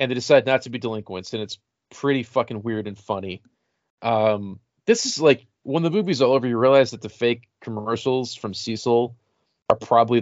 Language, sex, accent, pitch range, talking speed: English, male, American, 105-125 Hz, 195 wpm